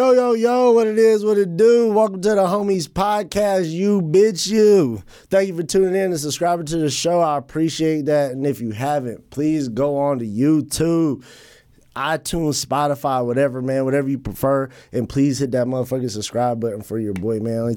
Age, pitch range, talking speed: 20-39, 115-140 Hz, 195 wpm